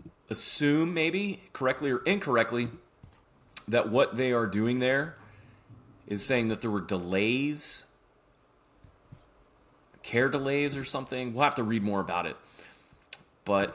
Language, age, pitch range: English, 30-49, 100-125 Hz